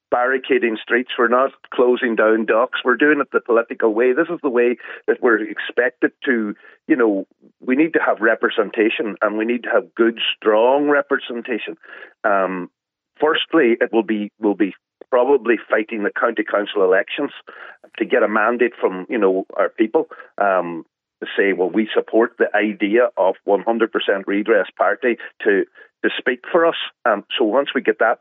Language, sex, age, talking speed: English, male, 40-59, 170 wpm